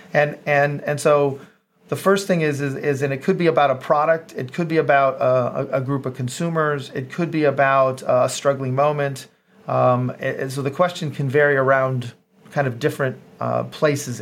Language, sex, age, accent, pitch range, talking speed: English, male, 40-59, American, 135-160 Hz, 190 wpm